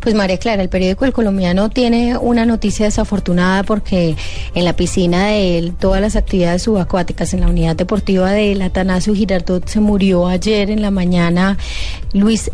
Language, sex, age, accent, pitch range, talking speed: Spanish, female, 30-49, Colombian, 180-205 Hz, 170 wpm